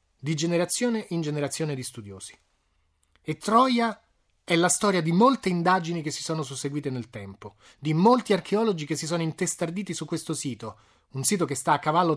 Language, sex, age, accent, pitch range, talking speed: Italian, male, 30-49, native, 135-180 Hz, 180 wpm